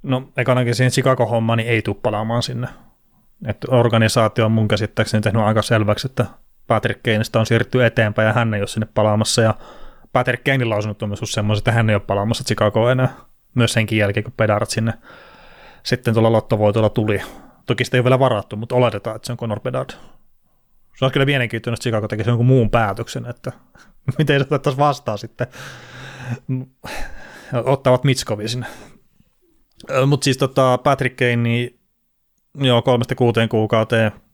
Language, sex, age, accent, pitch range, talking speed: Finnish, male, 30-49, native, 110-125 Hz, 155 wpm